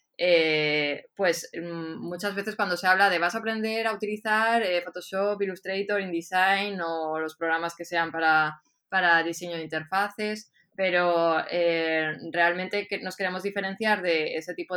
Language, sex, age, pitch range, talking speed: Spanish, female, 20-39, 165-195 Hz, 155 wpm